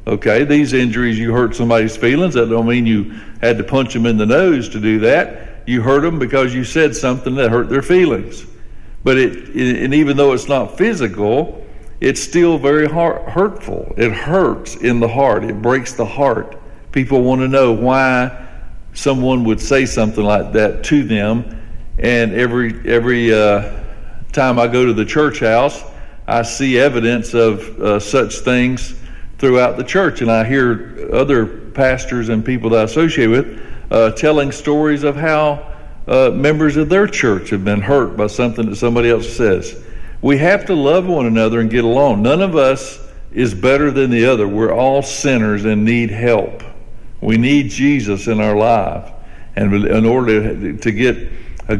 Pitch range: 110-135 Hz